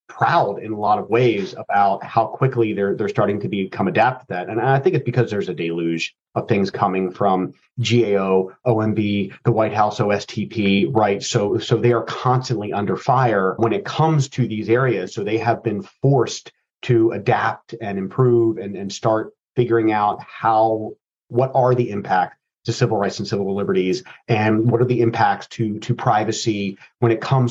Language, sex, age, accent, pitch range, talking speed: English, male, 30-49, American, 105-125 Hz, 185 wpm